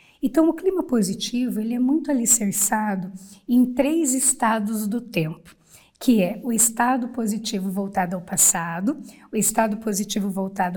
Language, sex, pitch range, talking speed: Portuguese, female, 200-245 Hz, 140 wpm